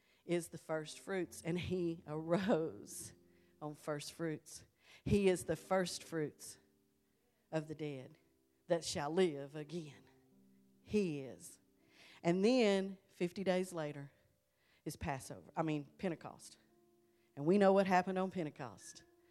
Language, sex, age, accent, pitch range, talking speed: English, female, 40-59, American, 135-180 Hz, 125 wpm